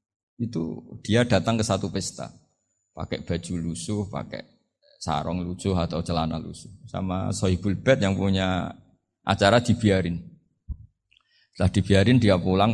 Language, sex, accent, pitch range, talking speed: Indonesian, male, native, 100-135 Hz, 120 wpm